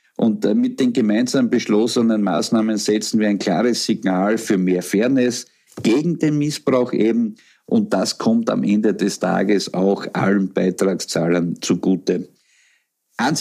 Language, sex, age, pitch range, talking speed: German, male, 50-69, 95-110 Hz, 135 wpm